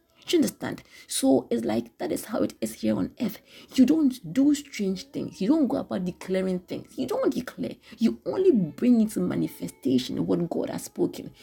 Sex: female